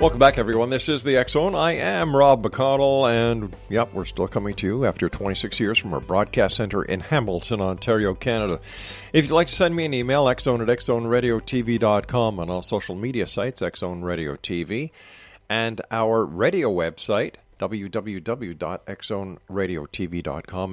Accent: American